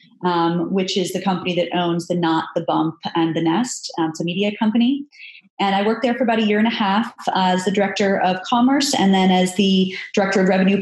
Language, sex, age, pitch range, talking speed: English, female, 20-39, 185-240 Hz, 240 wpm